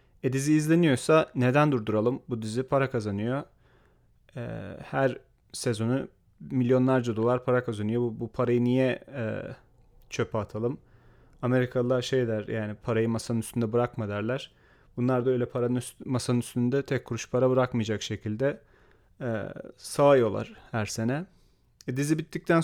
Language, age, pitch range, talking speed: Turkish, 30-49, 115-135 Hz, 135 wpm